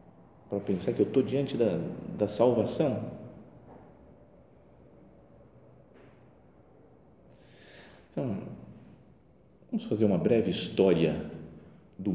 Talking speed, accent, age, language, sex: 80 wpm, Brazilian, 40-59, Portuguese, male